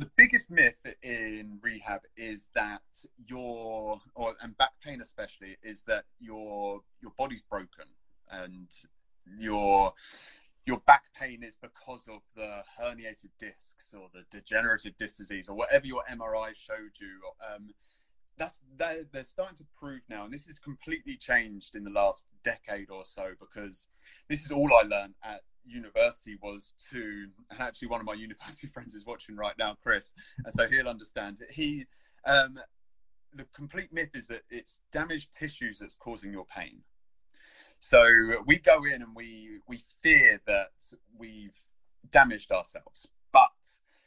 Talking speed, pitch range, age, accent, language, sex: 150 wpm, 105-145 Hz, 20-39, British, English, male